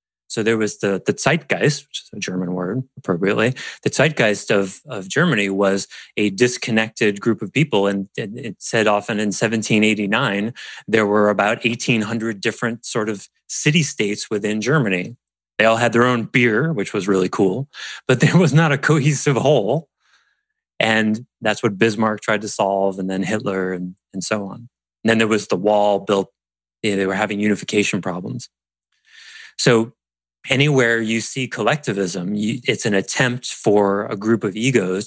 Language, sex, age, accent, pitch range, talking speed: English, male, 30-49, American, 100-140 Hz, 170 wpm